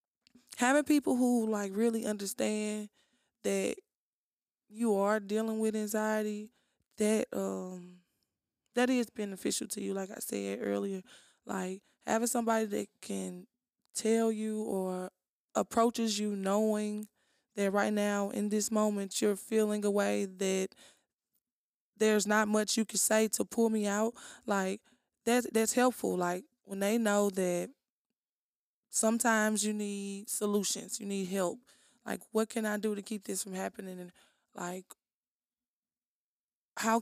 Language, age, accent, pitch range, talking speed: English, 20-39, American, 200-240 Hz, 135 wpm